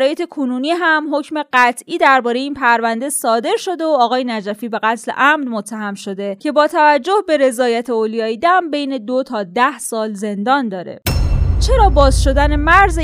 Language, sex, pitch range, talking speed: Persian, female, 225-300 Hz, 160 wpm